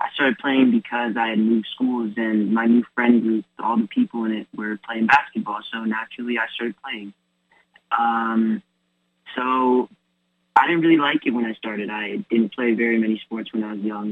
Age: 20-39